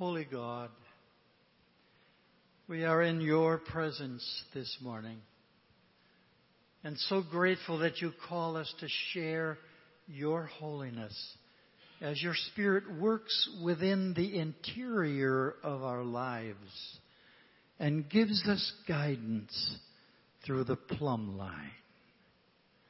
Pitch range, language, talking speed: 125-175 Hz, English, 100 wpm